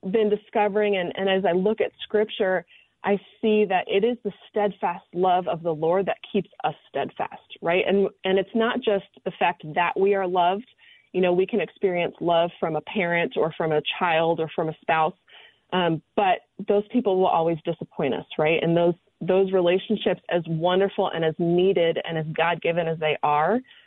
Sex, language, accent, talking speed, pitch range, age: female, English, American, 195 wpm, 170-200 Hz, 30-49